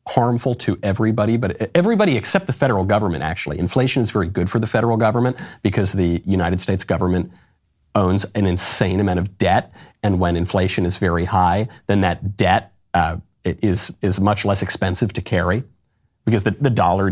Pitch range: 95-120 Hz